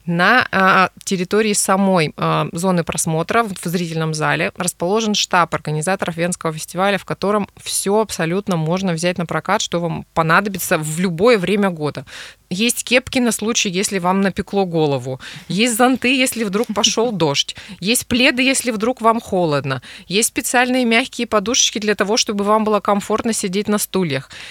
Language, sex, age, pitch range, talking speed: Russian, female, 20-39, 170-220 Hz, 150 wpm